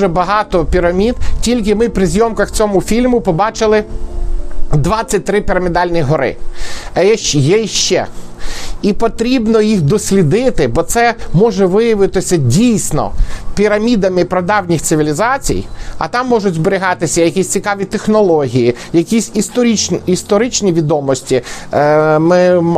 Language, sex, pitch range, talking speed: Ukrainian, male, 165-205 Hz, 105 wpm